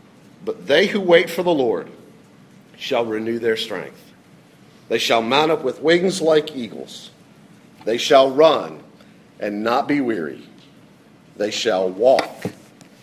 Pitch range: 115-170 Hz